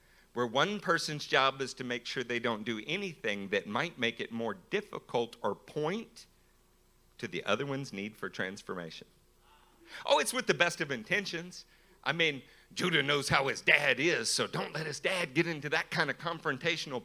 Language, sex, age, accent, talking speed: English, male, 50-69, American, 185 wpm